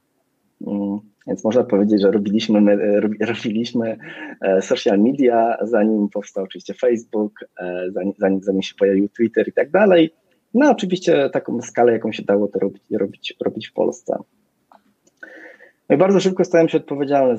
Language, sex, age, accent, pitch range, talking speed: Polish, male, 20-39, native, 100-125 Hz, 140 wpm